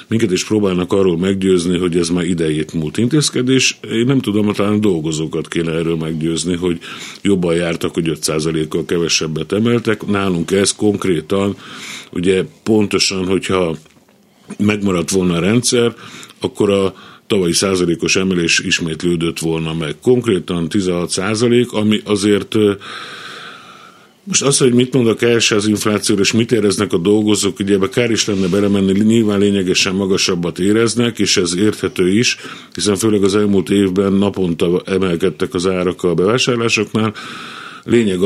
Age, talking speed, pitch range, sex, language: 50-69, 140 wpm, 90-110 Hz, male, Hungarian